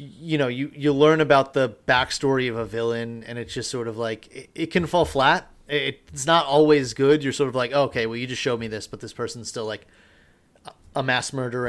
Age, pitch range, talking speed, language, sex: 30-49, 120-155 Hz, 230 wpm, English, male